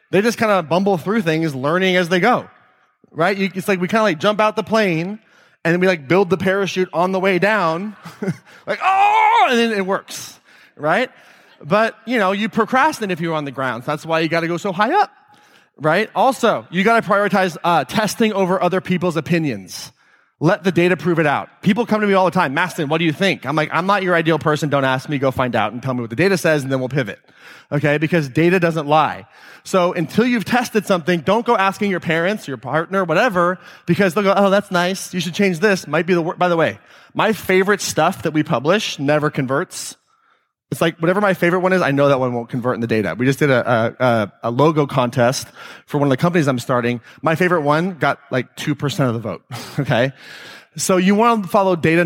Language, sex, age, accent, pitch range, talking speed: English, male, 30-49, American, 150-200 Hz, 235 wpm